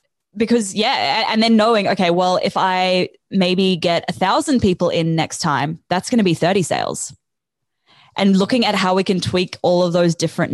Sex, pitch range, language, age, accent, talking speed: female, 165-200 Hz, English, 20-39, Australian, 195 wpm